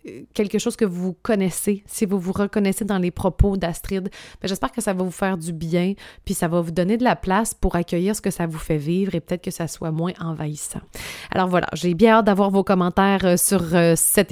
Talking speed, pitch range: 225 wpm, 165-205 Hz